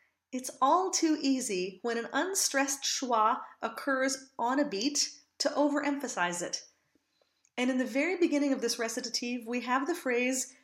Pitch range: 245-305 Hz